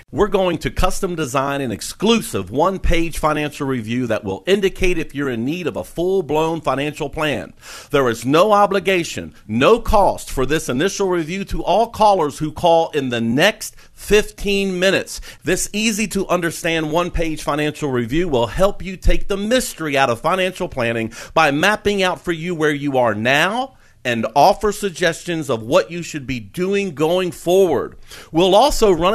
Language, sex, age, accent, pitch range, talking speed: English, male, 50-69, American, 140-195 Hz, 165 wpm